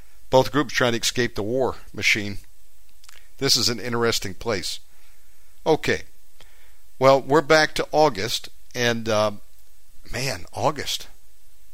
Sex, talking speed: male, 125 wpm